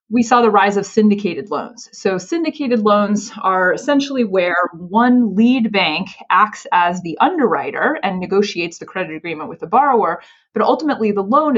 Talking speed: 165 wpm